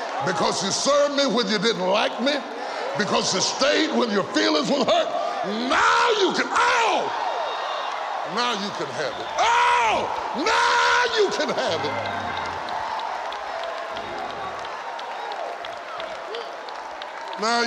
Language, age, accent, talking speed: English, 60-79, American, 110 wpm